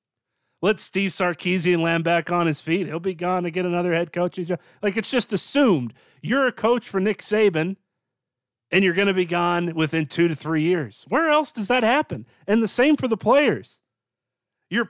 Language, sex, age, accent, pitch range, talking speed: English, male, 30-49, American, 135-210 Hz, 195 wpm